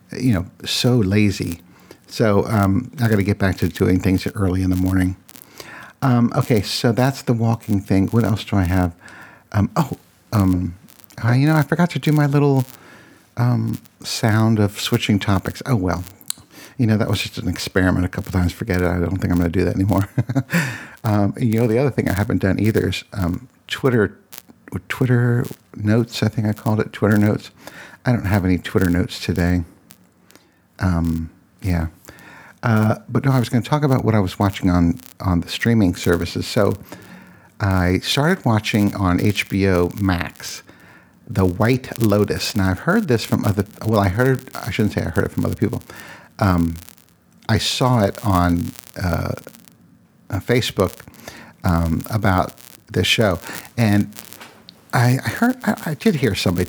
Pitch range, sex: 90-120 Hz, male